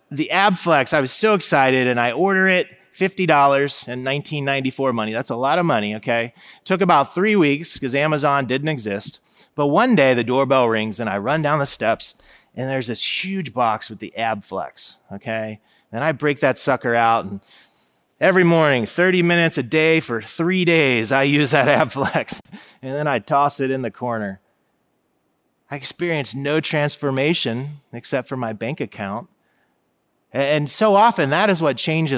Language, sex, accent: English, male, American